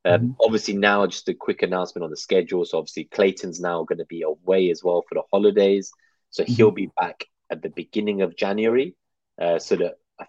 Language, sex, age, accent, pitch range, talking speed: English, male, 20-39, British, 95-140 Hz, 215 wpm